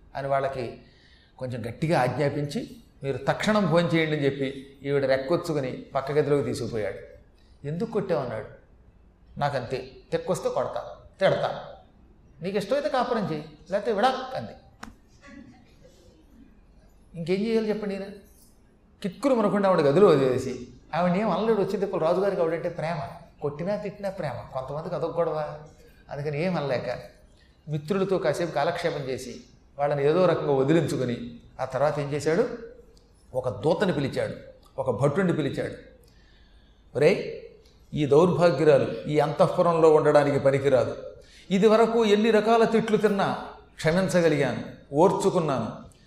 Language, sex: Telugu, male